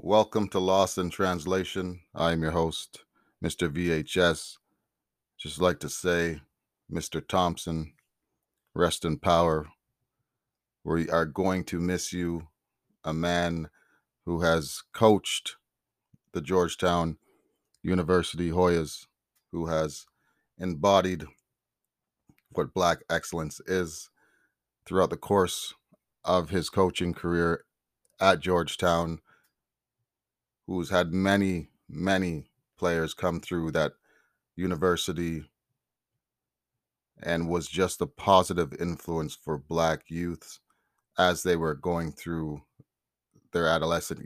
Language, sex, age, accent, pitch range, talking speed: English, male, 30-49, American, 80-90 Hz, 100 wpm